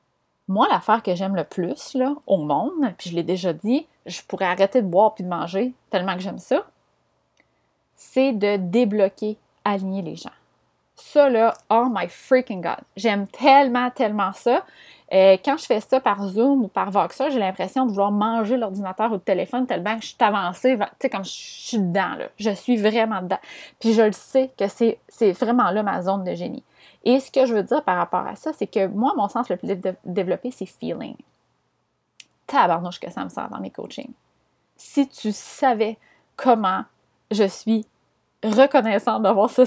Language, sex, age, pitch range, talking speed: French, female, 30-49, 195-250 Hz, 195 wpm